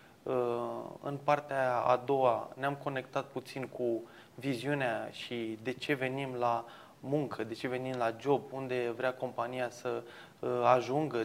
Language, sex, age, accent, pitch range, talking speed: Romanian, male, 20-39, native, 125-155 Hz, 135 wpm